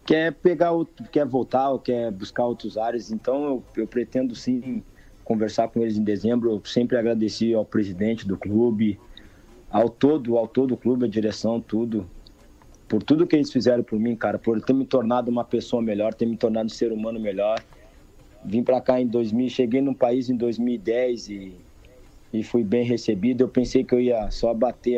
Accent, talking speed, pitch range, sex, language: Brazilian, 190 wpm, 105-120 Hz, male, Portuguese